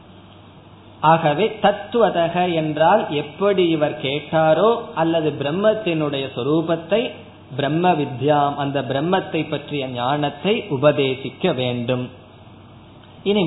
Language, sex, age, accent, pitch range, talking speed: Tamil, male, 20-39, native, 145-195 Hz, 60 wpm